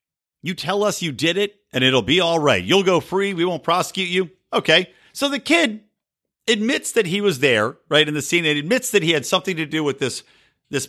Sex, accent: male, American